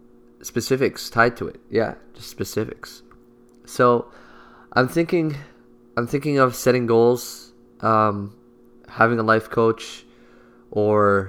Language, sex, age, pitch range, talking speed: English, male, 20-39, 105-120 Hz, 110 wpm